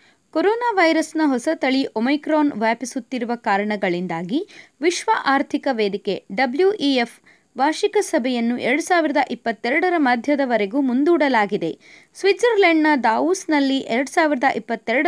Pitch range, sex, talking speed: 235-320 Hz, female, 80 wpm